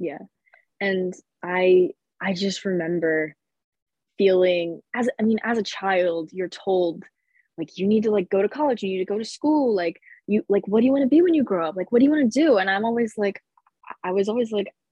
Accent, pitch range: American, 175-210 Hz